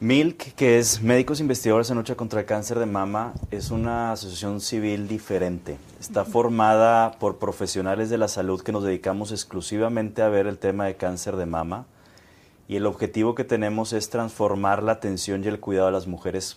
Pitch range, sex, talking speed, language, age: 95-115 Hz, male, 185 wpm, English, 30-49